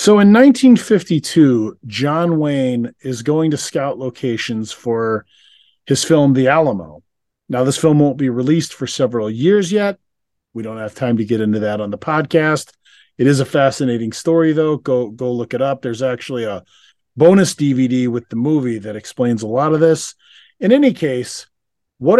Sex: male